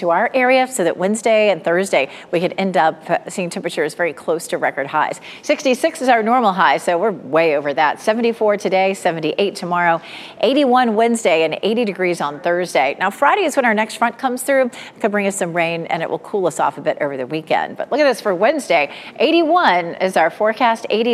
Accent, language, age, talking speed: American, English, 40-59, 220 wpm